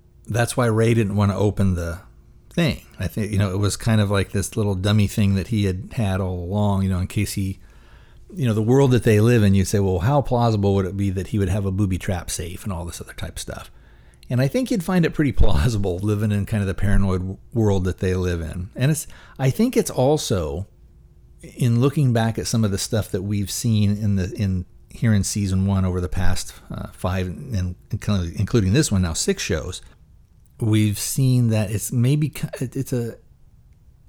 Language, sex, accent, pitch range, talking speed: English, male, American, 95-115 Hz, 220 wpm